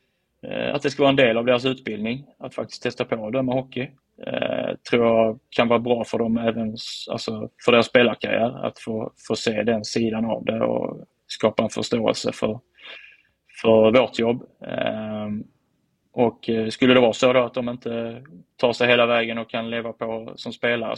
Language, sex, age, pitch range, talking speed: Swedish, male, 20-39, 115-130 Hz, 185 wpm